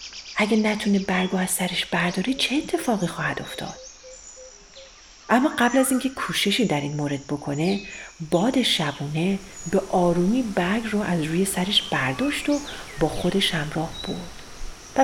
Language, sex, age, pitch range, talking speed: Persian, female, 40-59, 175-255 Hz, 140 wpm